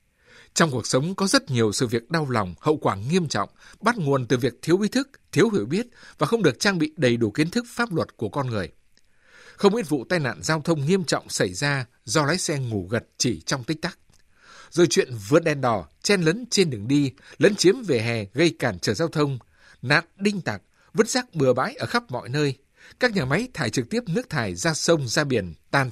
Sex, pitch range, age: male, 125-175 Hz, 60-79